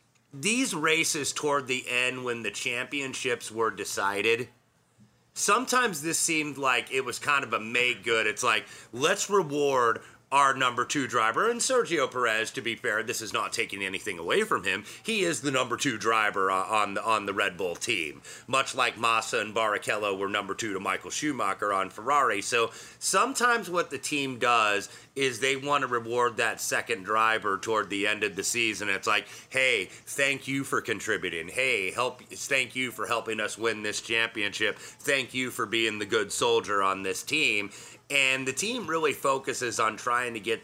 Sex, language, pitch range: male, English, 110-140 Hz